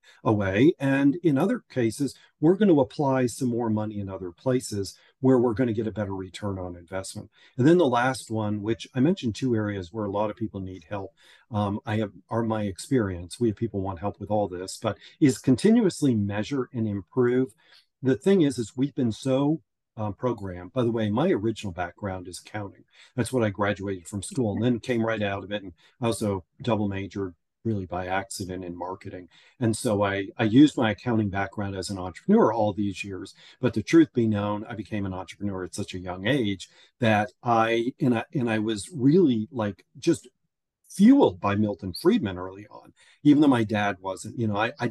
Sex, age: male, 40-59